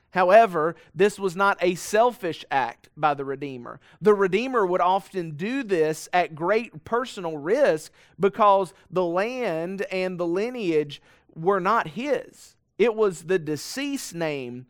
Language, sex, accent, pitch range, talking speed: English, male, American, 155-200 Hz, 140 wpm